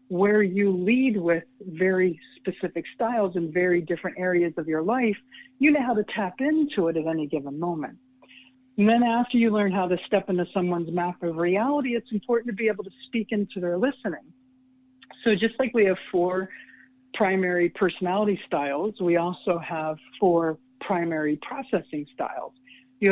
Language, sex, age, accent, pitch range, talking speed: English, female, 60-79, American, 175-235 Hz, 170 wpm